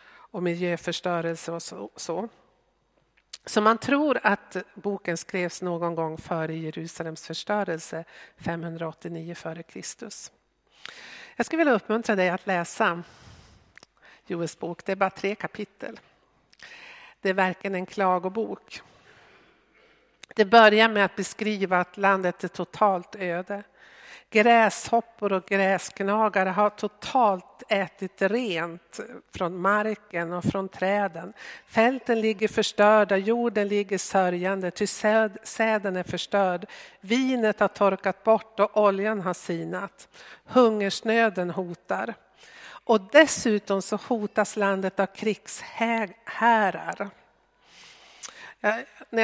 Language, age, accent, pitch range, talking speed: Swedish, 50-69, native, 180-220 Hz, 105 wpm